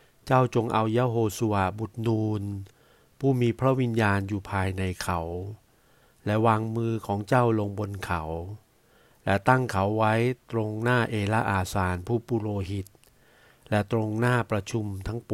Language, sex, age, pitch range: Thai, male, 60-79, 100-120 Hz